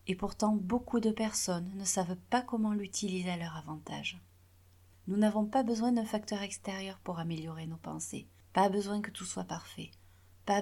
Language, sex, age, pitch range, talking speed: French, female, 30-49, 155-205 Hz, 175 wpm